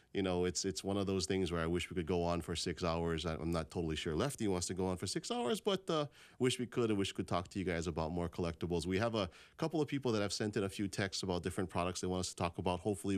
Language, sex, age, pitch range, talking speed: English, male, 30-49, 85-105 Hz, 315 wpm